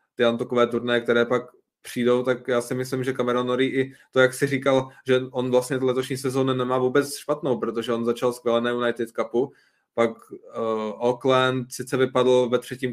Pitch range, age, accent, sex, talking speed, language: 120-135 Hz, 20-39, native, male, 175 wpm, Czech